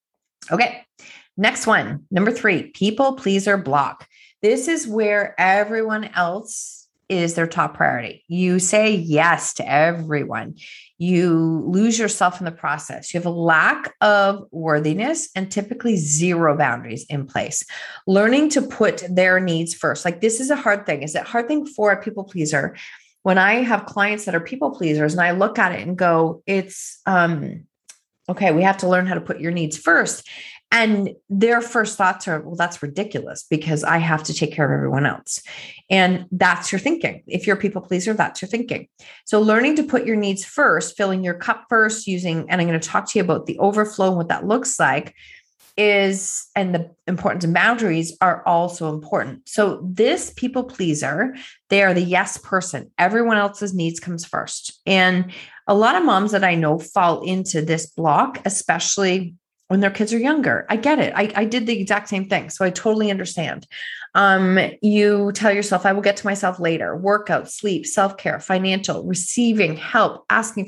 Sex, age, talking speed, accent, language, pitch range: female, 30-49, 185 wpm, American, English, 170-210 Hz